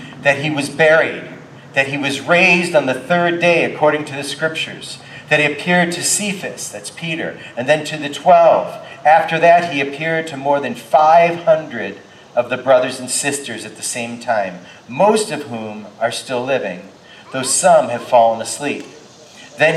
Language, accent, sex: English, American, male